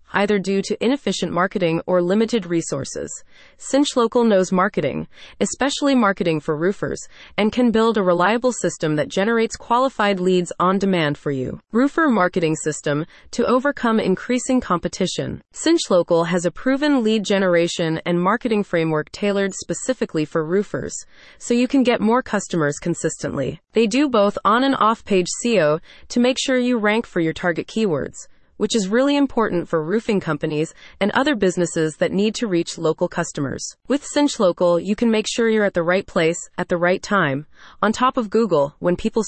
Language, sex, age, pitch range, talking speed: English, female, 30-49, 175-235 Hz, 170 wpm